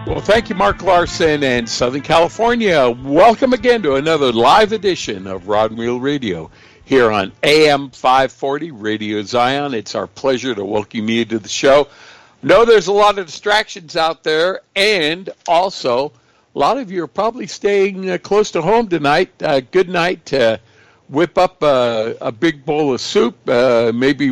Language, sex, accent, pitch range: English, male, American, 130-185 Hz